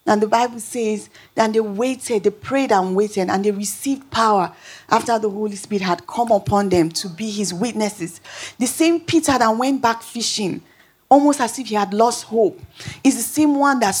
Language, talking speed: English, 195 wpm